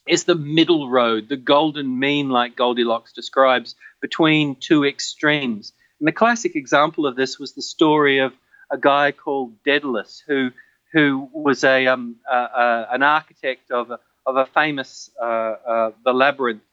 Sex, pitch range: male, 130-170 Hz